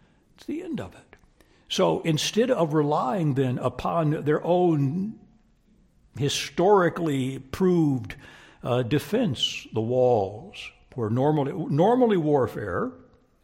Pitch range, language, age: 135-180 Hz, English, 60-79